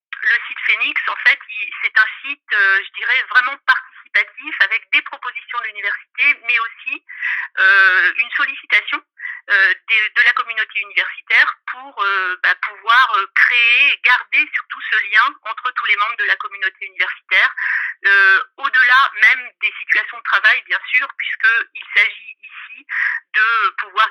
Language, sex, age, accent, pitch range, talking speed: French, female, 50-69, French, 205-280 Hz, 130 wpm